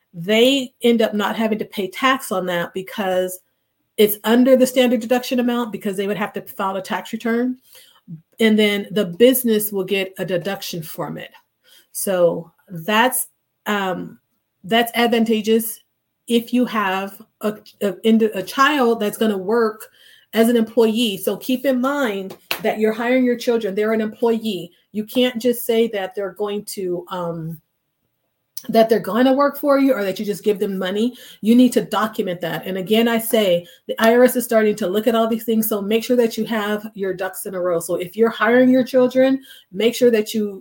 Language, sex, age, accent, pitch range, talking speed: English, female, 40-59, American, 190-230 Hz, 190 wpm